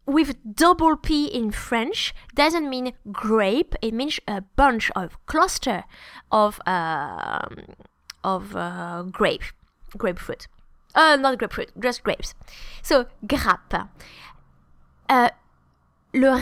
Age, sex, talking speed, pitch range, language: 20-39, female, 105 wpm, 215-290 Hz, English